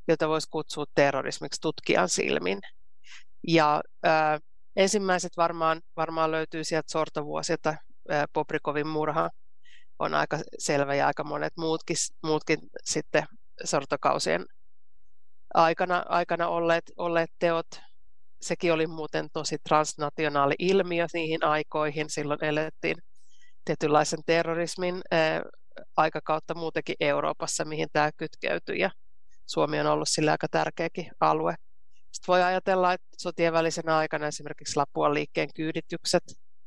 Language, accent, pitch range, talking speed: Finnish, native, 155-170 Hz, 110 wpm